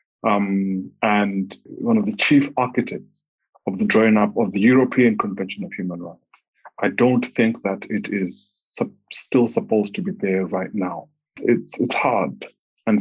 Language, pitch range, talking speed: English, 100-130 Hz, 160 wpm